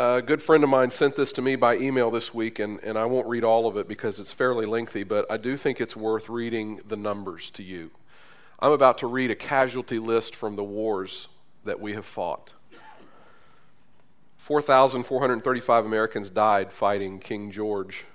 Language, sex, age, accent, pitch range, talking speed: English, male, 40-59, American, 100-120 Hz, 185 wpm